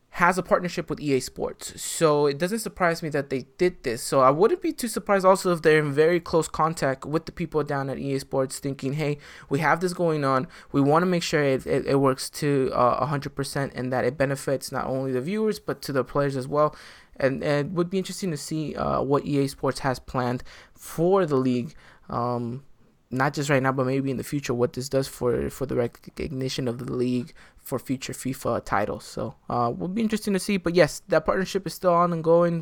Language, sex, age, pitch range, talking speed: English, male, 20-39, 130-165 Hz, 230 wpm